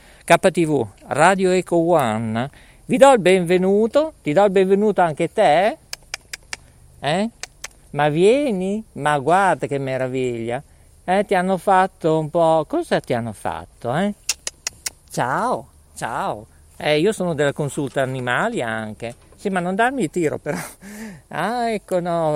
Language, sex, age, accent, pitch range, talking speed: Italian, male, 50-69, native, 140-200 Hz, 135 wpm